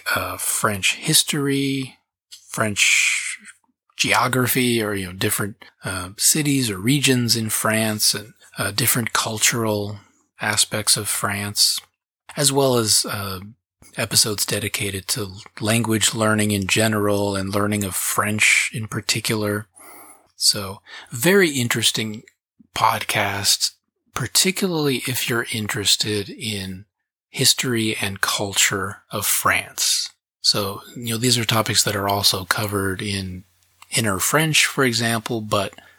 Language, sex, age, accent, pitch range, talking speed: English, male, 30-49, American, 100-120 Hz, 115 wpm